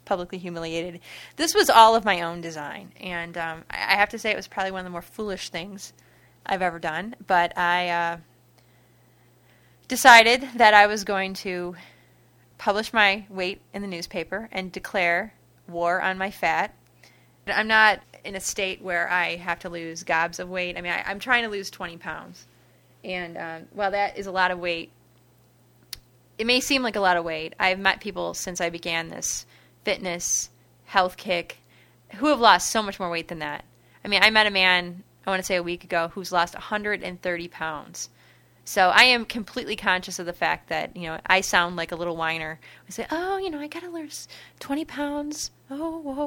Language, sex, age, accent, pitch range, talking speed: English, female, 30-49, American, 170-210 Hz, 200 wpm